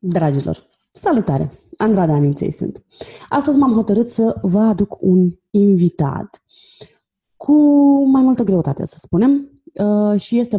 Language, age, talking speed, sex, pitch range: Romanian, 30-49, 120 wpm, female, 170-230 Hz